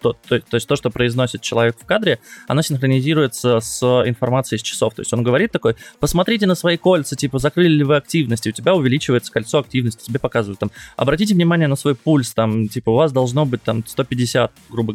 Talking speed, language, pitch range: 215 wpm, Russian, 110-130 Hz